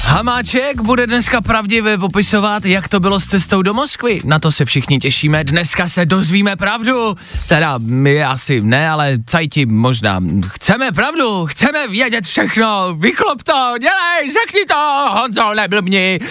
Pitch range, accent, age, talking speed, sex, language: 135-215 Hz, native, 20-39, 145 wpm, male, Czech